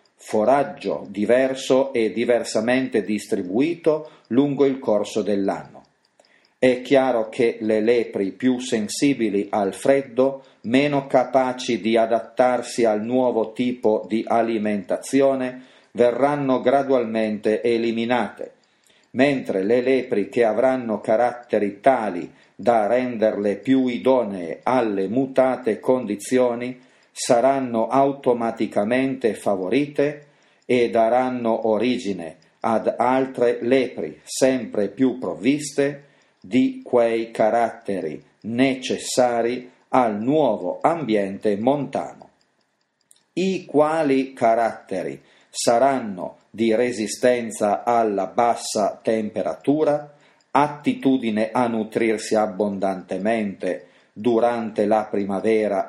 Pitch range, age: 110-130 Hz, 40-59